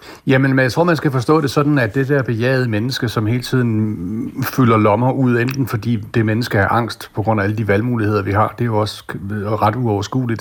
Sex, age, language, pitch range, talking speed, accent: male, 60-79, Danish, 100-130 Hz, 230 wpm, native